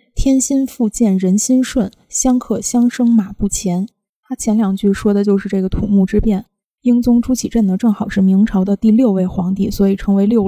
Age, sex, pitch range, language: 20-39, female, 195-230 Hz, Chinese